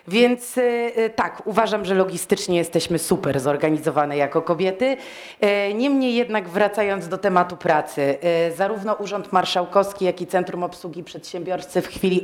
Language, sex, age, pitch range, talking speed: Polish, female, 30-49, 170-195 Hz, 130 wpm